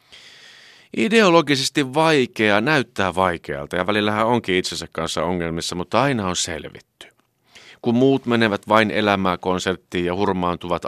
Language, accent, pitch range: Finnish, native, 85-115 Hz